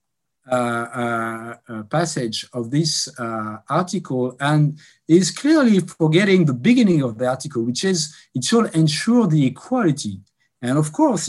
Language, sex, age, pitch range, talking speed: French, male, 50-69, 125-185 Hz, 145 wpm